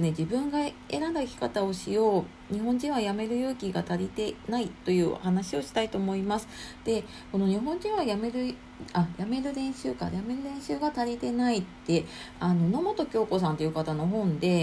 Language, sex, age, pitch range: Japanese, female, 40-59, 175-240 Hz